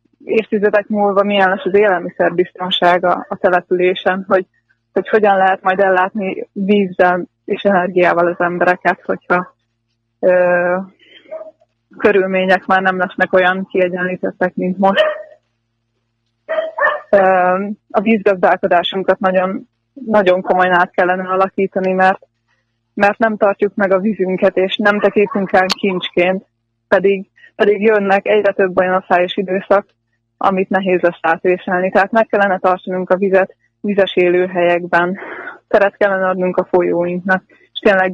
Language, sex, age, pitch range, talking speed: Hungarian, female, 20-39, 180-205 Hz, 125 wpm